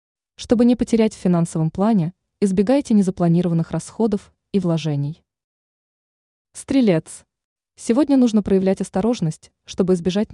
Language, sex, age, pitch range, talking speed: Russian, female, 20-39, 170-230 Hz, 105 wpm